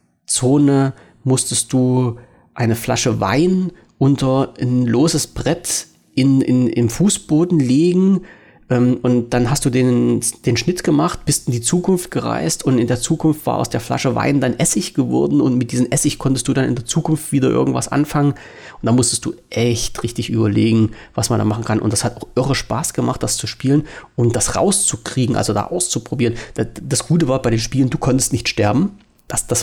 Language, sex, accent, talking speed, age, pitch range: German, male, German, 190 wpm, 40-59, 115-135 Hz